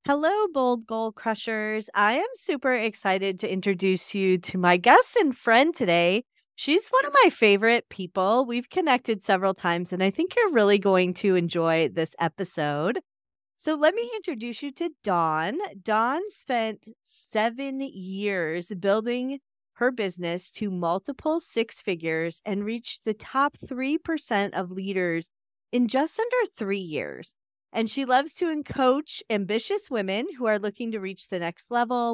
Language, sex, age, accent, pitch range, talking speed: English, female, 30-49, American, 185-260 Hz, 155 wpm